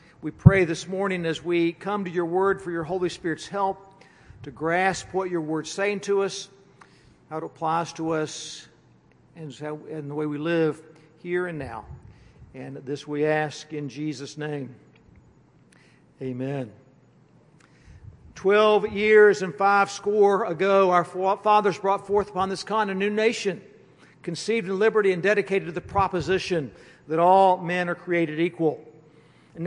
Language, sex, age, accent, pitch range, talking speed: English, male, 60-79, American, 155-205 Hz, 155 wpm